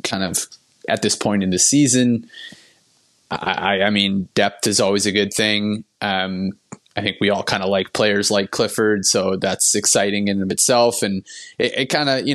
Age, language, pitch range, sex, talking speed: 20-39, English, 100-115 Hz, male, 195 wpm